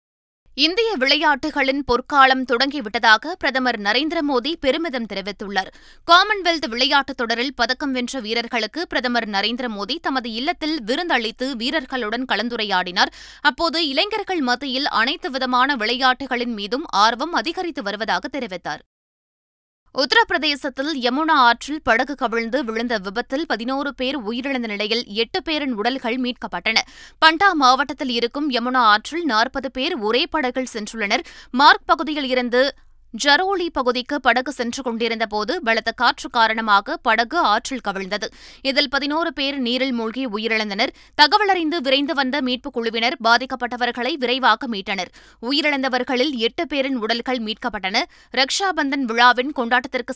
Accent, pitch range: native, 235-290 Hz